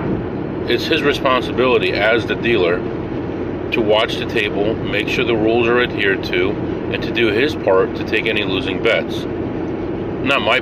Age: 40-59